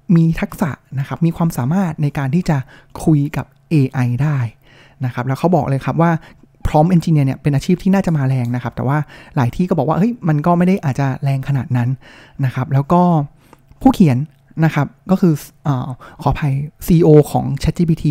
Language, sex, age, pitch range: Thai, male, 20-39, 135-175 Hz